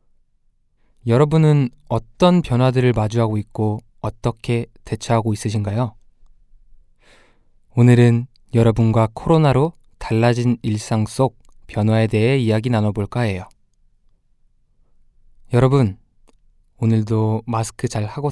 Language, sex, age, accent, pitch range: Korean, male, 20-39, native, 110-135 Hz